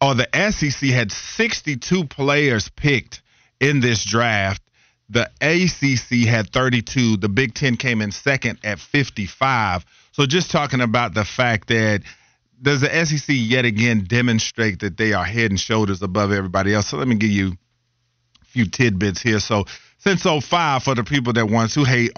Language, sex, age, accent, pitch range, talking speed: English, male, 40-59, American, 105-135 Hz, 175 wpm